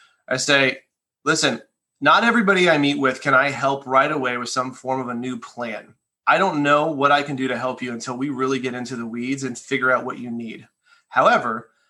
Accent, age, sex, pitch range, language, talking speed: American, 30-49, male, 130-165 Hz, English, 220 wpm